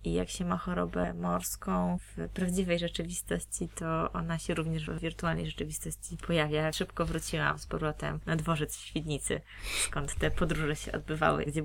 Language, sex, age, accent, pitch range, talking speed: Polish, female, 20-39, native, 165-210 Hz, 160 wpm